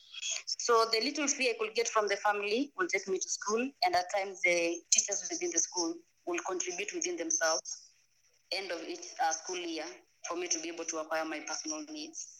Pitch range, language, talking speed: 165-260 Hz, English, 205 wpm